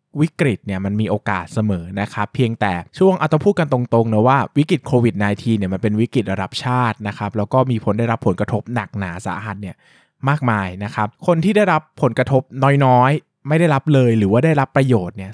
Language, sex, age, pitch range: Thai, male, 20-39, 110-150 Hz